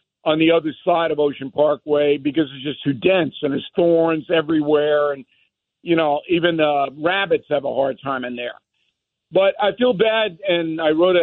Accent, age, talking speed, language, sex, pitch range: American, 50-69, 185 wpm, English, male, 150-195 Hz